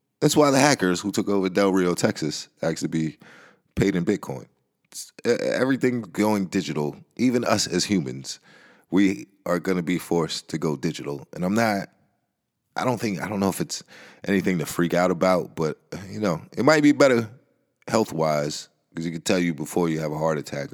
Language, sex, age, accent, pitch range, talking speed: English, male, 30-49, American, 75-110 Hz, 190 wpm